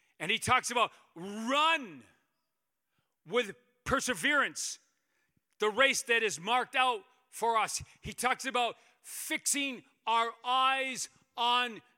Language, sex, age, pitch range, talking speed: English, male, 40-59, 145-225 Hz, 110 wpm